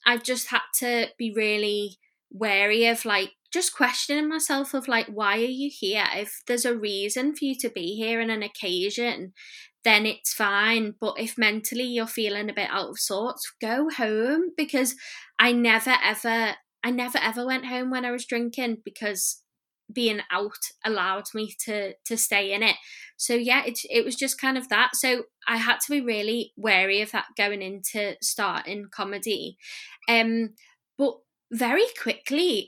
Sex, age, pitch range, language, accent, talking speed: female, 10-29, 210-260 Hz, English, British, 175 wpm